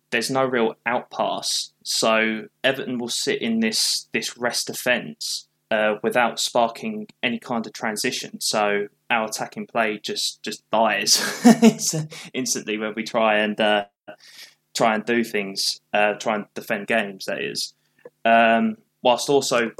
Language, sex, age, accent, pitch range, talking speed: English, male, 10-29, British, 110-130 Hz, 145 wpm